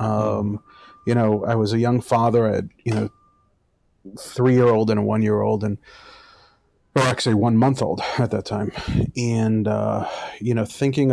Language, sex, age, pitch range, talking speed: English, male, 30-49, 105-130 Hz, 160 wpm